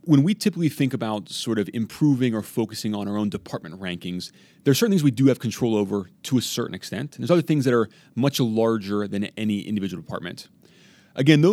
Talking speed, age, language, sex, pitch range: 215 wpm, 30-49, English, male, 105-140 Hz